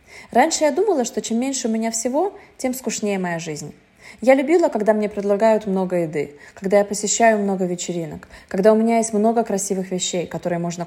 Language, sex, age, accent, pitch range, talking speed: Russian, female, 20-39, native, 190-250 Hz, 190 wpm